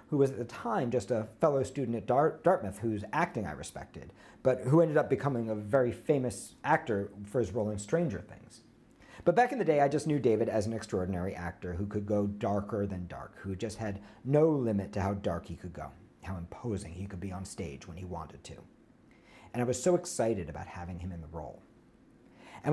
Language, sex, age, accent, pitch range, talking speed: English, male, 50-69, American, 100-135 Hz, 220 wpm